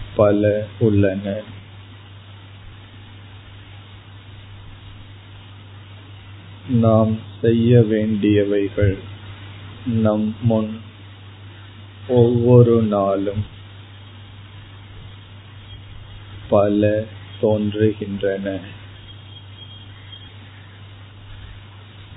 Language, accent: Tamil, native